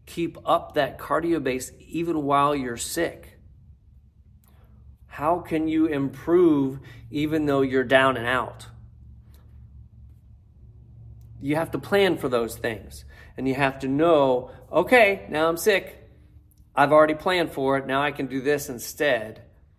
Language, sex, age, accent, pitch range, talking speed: English, male, 40-59, American, 100-135 Hz, 140 wpm